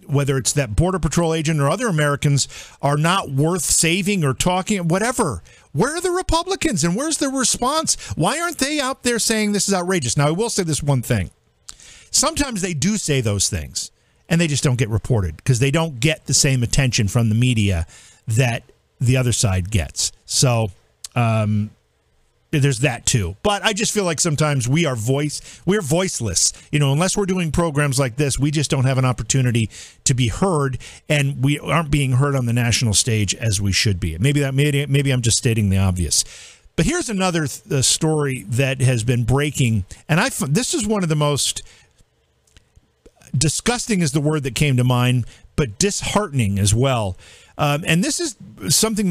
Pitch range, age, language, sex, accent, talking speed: 120-175 Hz, 50-69, English, male, American, 190 wpm